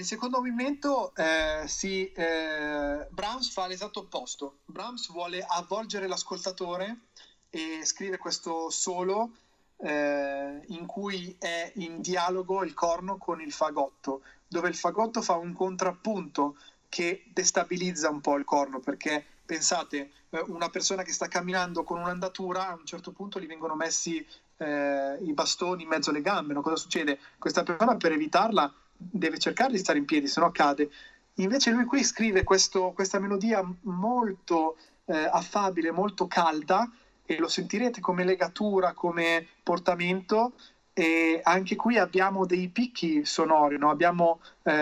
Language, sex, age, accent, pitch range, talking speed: Italian, male, 30-49, native, 160-195 Hz, 145 wpm